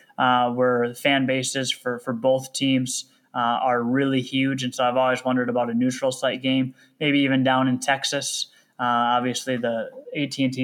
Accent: American